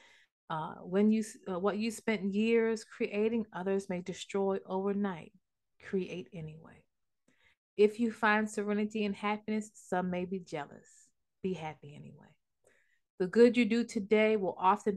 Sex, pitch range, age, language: female, 155-205 Hz, 30-49, English